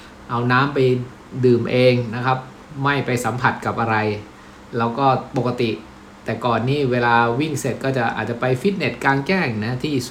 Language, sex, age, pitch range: Thai, male, 60-79, 110-135 Hz